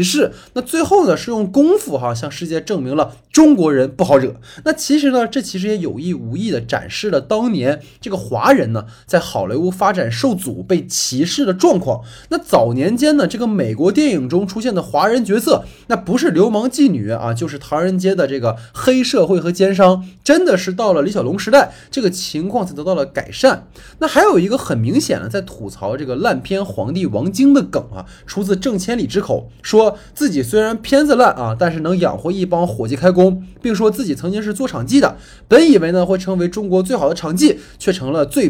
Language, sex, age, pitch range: Chinese, male, 20-39, 165-265 Hz